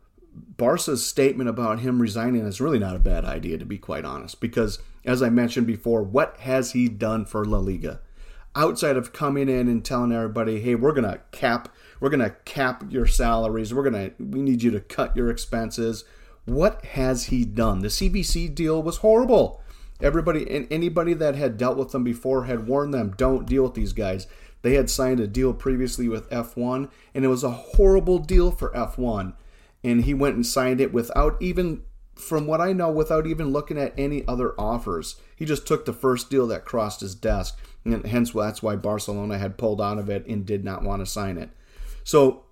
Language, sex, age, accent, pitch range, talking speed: English, male, 40-59, American, 110-135 Hz, 205 wpm